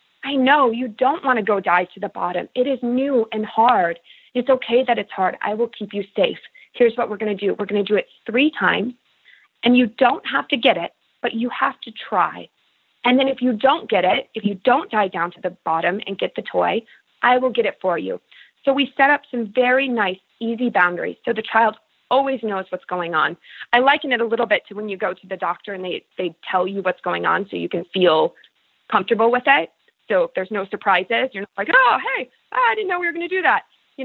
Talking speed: 250 wpm